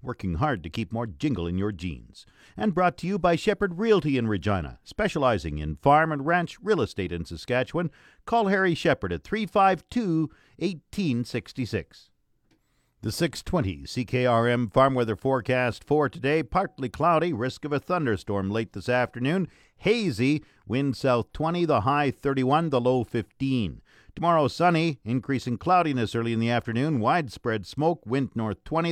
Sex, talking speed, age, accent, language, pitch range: male, 155 wpm, 50-69, American, English, 115-155 Hz